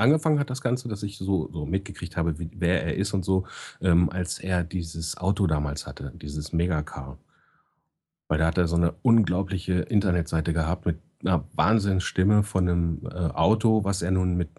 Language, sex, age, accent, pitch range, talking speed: German, male, 40-59, German, 85-105 Hz, 180 wpm